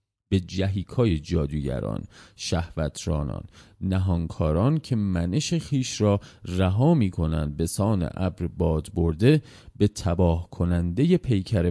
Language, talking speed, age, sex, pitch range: Persian, 105 wpm, 30-49, male, 80-105 Hz